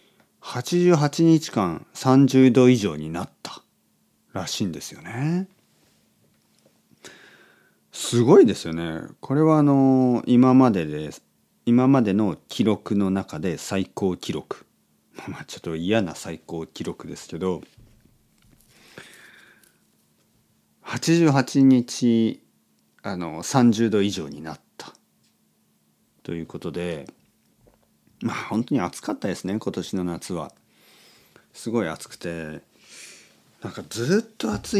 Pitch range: 85-135 Hz